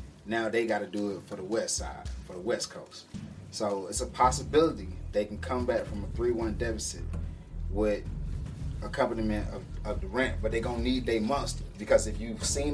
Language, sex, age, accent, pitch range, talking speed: English, male, 20-39, American, 85-120 Hz, 205 wpm